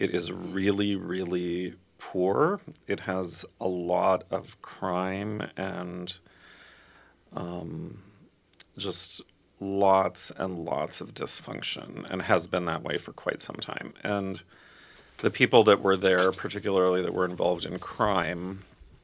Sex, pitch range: male, 90-100 Hz